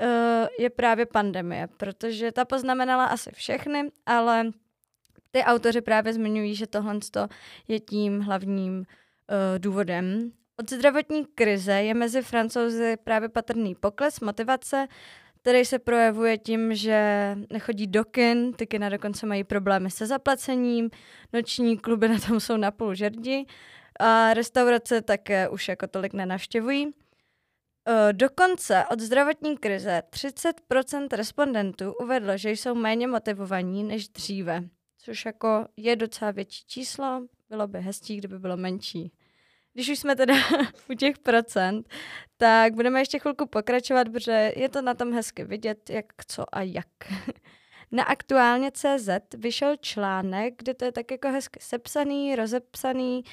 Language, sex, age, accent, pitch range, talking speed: Czech, female, 20-39, native, 210-255 Hz, 135 wpm